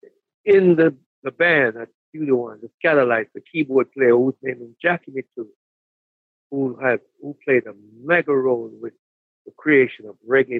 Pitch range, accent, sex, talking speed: 120-155 Hz, American, male, 170 wpm